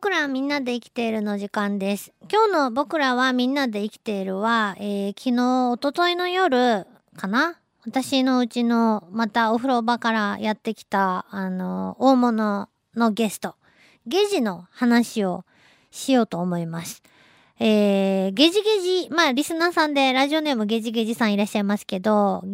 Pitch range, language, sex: 205-300 Hz, Japanese, male